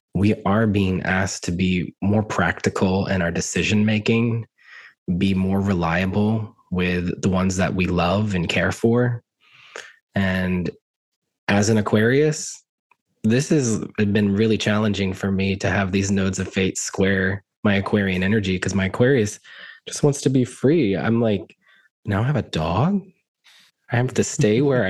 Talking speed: 155 wpm